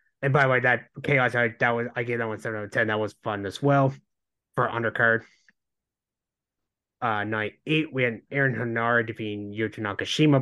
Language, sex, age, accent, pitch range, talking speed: English, male, 30-49, American, 110-135 Hz, 195 wpm